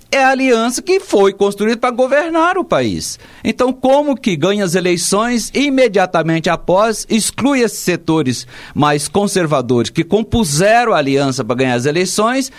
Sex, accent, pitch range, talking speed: male, Brazilian, 150-215 Hz, 150 wpm